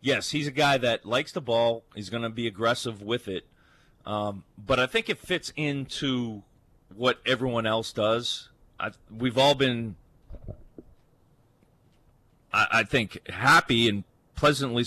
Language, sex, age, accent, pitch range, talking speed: English, male, 40-59, American, 110-140 Hz, 145 wpm